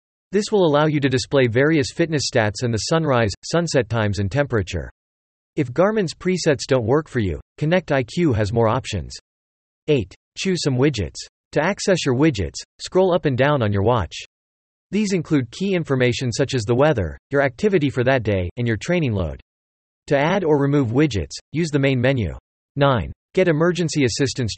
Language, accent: English, American